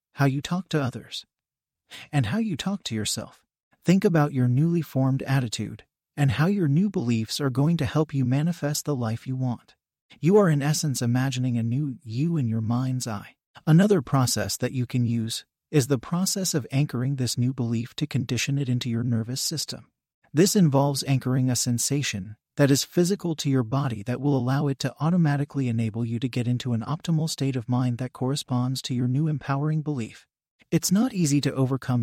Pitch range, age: 125-155 Hz, 40-59